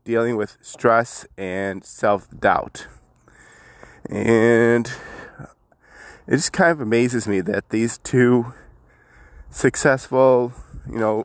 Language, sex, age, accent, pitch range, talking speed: English, male, 20-39, American, 100-125 Hz, 95 wpm